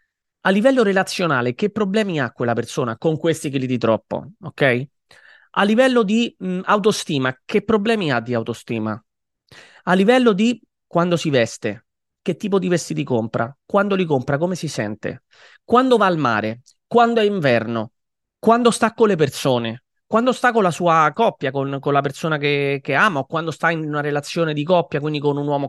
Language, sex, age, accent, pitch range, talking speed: Italian, male, 30-49, native, 135-180 Hz, 185 wpm